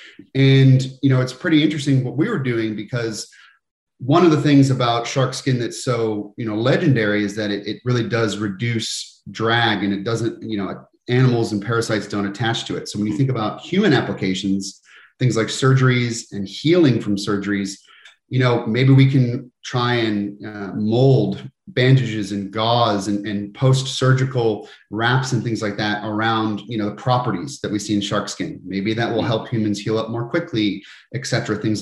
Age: 30-49